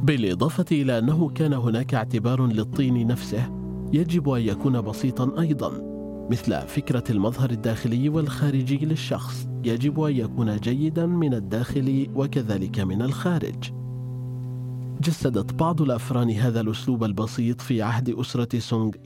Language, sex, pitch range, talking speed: Arabic, male, 110-140 Hz, 120 wpm